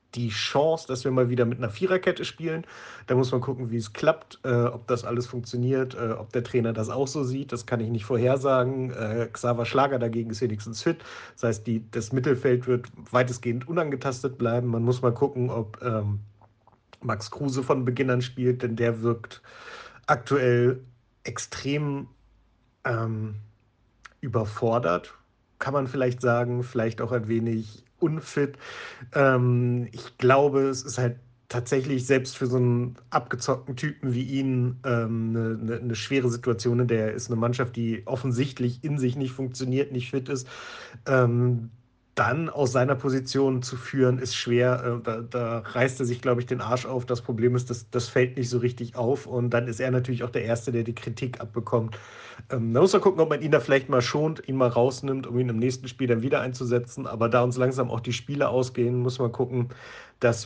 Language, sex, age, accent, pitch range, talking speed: German, male, 50-69, German, 115-130 Hz, 185 wpm